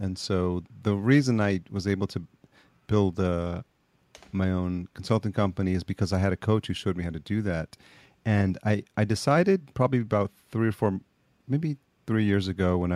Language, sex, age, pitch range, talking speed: English, male, 40-59, 90-110 Hz, 190 wpm